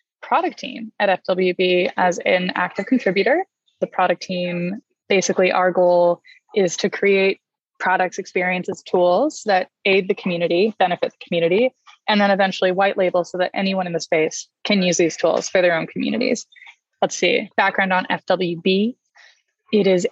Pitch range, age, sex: 180-225 Hz, 20-39, female